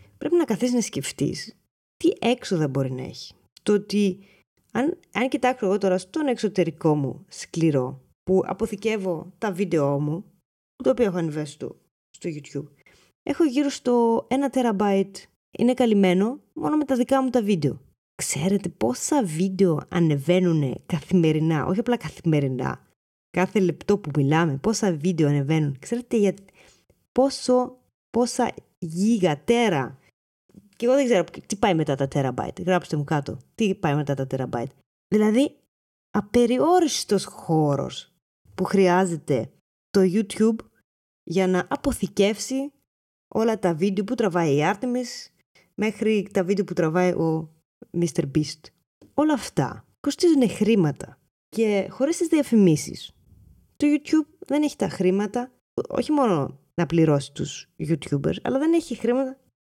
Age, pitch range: 20-39, 160-245 Hz